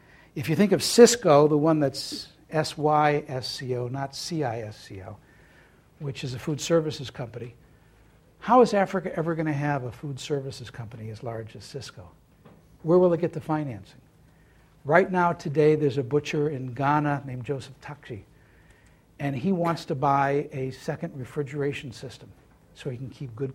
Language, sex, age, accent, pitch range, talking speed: English, male, 60-79, American, 130-160 Hz, 160 wpm